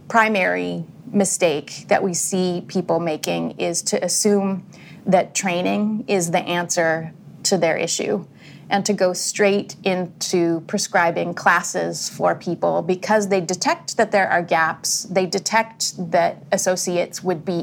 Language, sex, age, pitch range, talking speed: English, female, 30-49, 170-200 Hz, 135 wpm